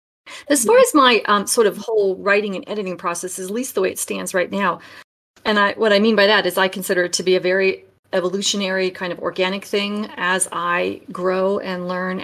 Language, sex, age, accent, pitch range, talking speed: English, female, 40-59, American, 180-215 Hz, 225 wpm